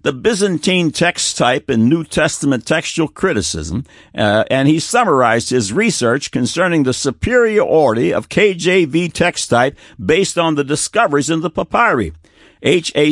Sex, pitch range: male, 125-170 Hz